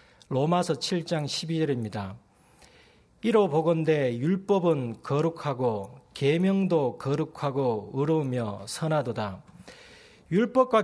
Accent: native